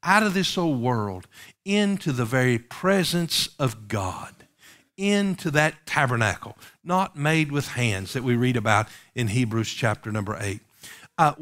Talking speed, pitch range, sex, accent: 145 wpm, 125-185 Hz, male, American